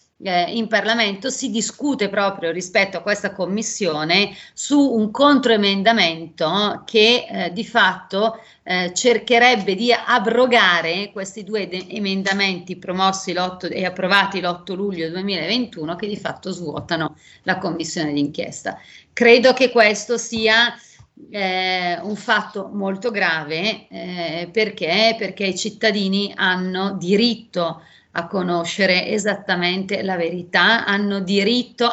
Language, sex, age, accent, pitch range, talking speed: Italian, female, 40-59, native, 180-215 Hz, 115 wpm